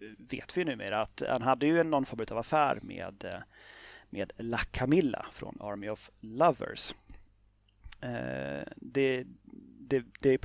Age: 30-49